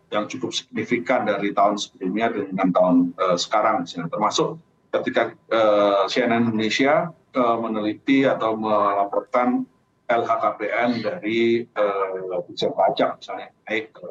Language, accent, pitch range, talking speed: Indonesian, native, 110-135 Hz, 110 wpm